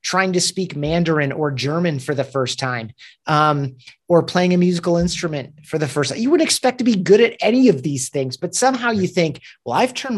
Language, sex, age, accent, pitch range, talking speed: English, male, 30-49, American, 130-170 Hz, 225 wpm